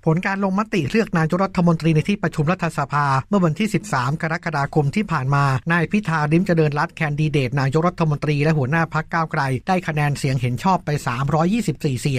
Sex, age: male, 60-79